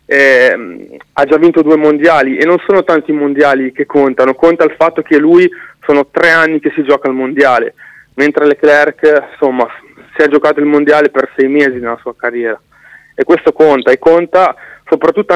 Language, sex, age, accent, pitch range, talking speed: Italian, male, 30-49, native, 135-160 Hz, 185 wpm